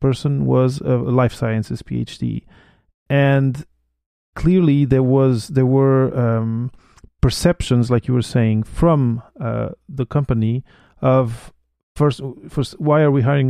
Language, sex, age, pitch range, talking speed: English, male, 30-49, 120-140 Hz, 130 wpm